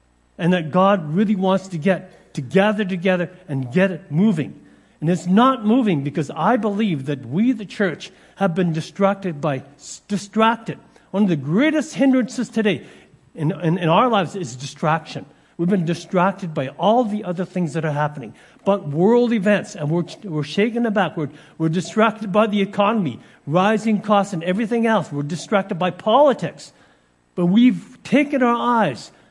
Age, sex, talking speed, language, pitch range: 60-79, male, 170 wpm, English, 160-215 Hz